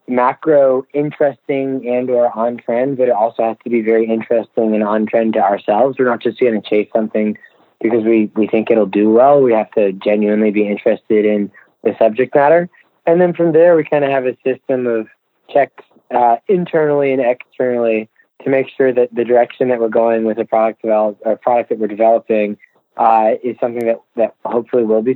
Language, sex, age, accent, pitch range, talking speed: English, male, 20-39, American, 110-130 Hz, 205 wpm